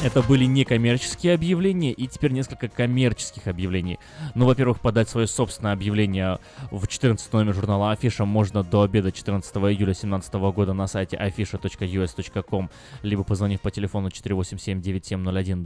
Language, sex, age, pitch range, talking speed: Russian, male, 20-39, 95-130 Hz, 135 wpm